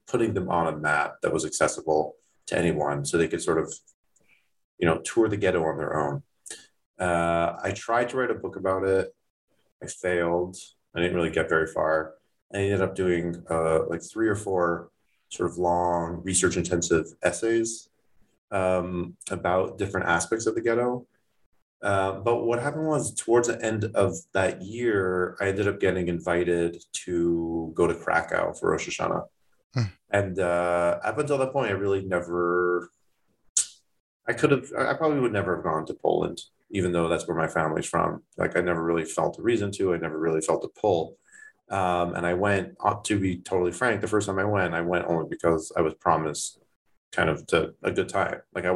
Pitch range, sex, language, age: 85-110 Hz, male, English, 30-49